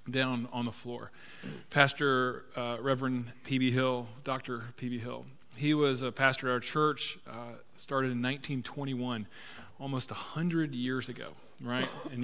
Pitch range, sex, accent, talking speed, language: 120-140 Hz, male, American, 140 wpm, English